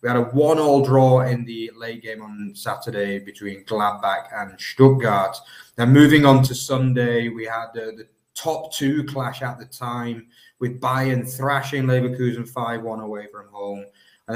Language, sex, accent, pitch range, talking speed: English, male, British, 110-135 Hz, 165 wpm